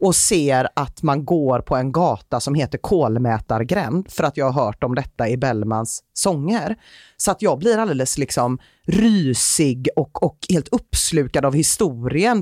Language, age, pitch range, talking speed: Swedish, 30-49, 125-185 Hz, 165 wpm